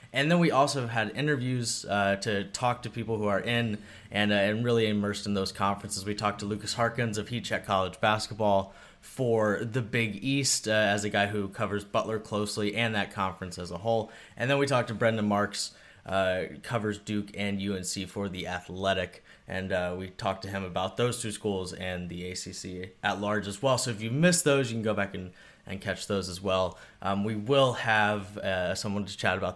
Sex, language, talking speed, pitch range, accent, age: male, English, 215 wpm, 95-115 Hz, American, 20-39